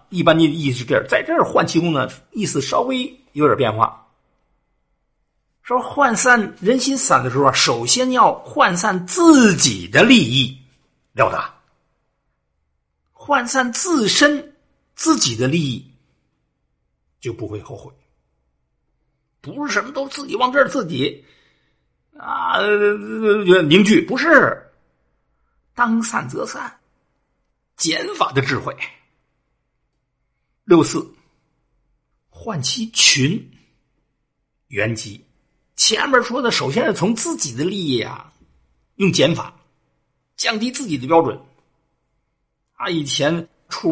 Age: 50-69